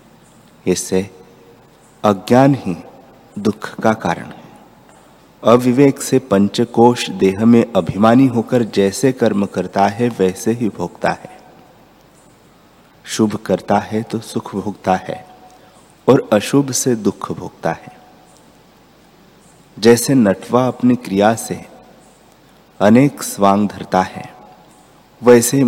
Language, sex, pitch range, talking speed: Hindi, male, 95-120 Hz, 105 wpm